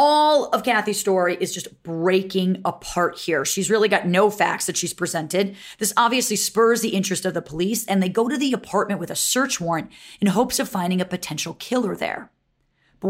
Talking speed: 200 wpm